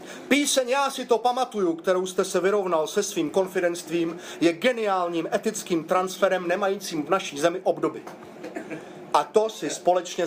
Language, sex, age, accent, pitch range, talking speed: Czech, male, 40-59, native, 170-215 Hz, 145 wpm